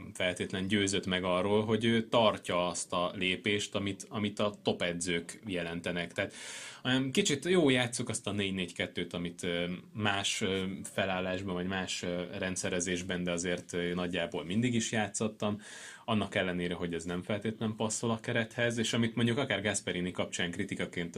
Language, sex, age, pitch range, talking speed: Hungarian, male, 20-39, 90-105 Hz, 140 wpm